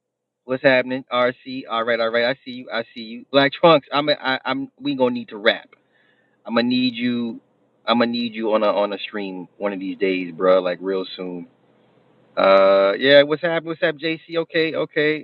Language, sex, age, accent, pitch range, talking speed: English, male, 30-49, American, 115-175 Hz, 205 wpm